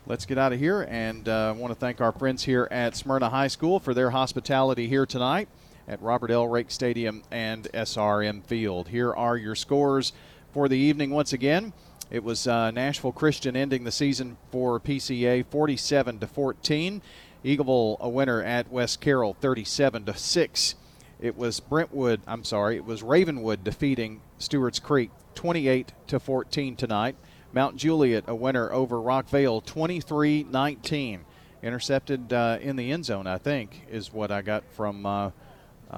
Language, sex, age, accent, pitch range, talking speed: English, male, 40-59, American, 115-140 Hz, 165 wpm